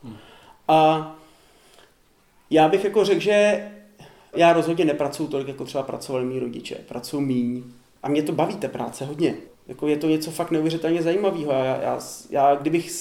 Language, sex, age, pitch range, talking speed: Czech, male, 30-49, 145-165 Hz, 155 wpm